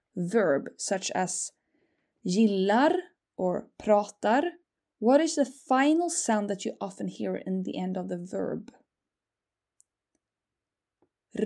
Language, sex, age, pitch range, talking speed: English, female, 20-39, 190-265 Hz, 115 wpm